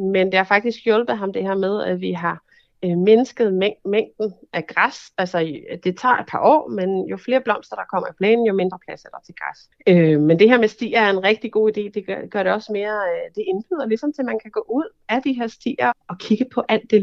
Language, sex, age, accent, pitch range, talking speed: Danish, female, 30-49, native, 180-235 Hz, 270 wpm